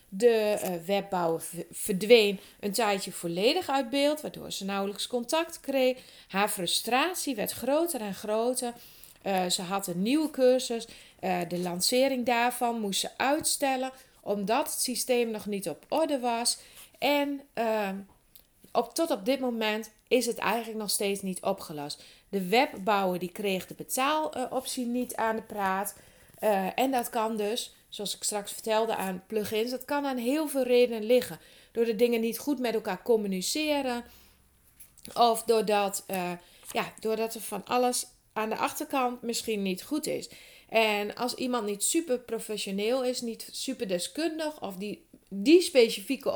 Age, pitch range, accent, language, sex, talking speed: 30-49, 200-255 Hz, Dutch, Dutch, female, 150 wpm